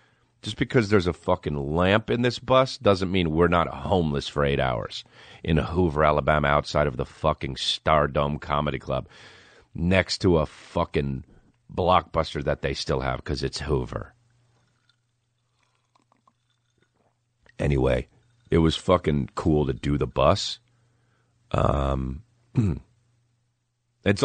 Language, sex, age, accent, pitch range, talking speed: English, male, 40-59, American, 75-125 Hz, 125 wpm